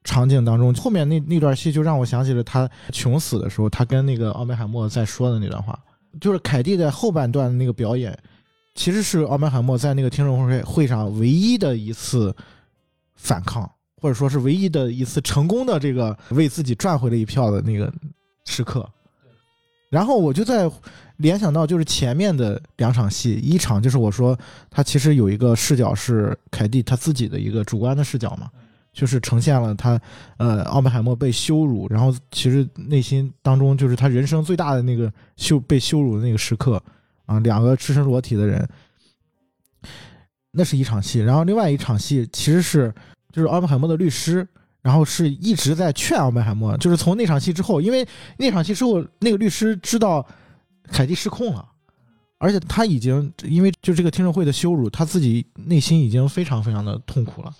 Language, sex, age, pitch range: Chinese, male, 20-39, 120-160 Hz